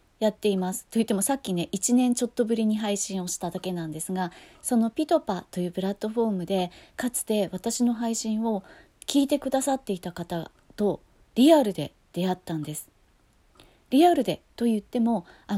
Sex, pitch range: female, 185-280 Hz